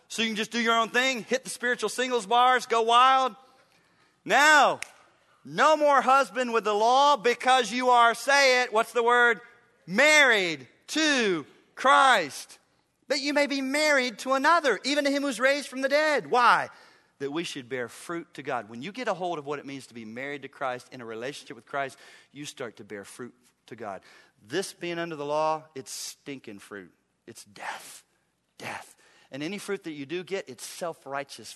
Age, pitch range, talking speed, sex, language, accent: 40-59, 160-255 Hz, 195 wpm, male, English, American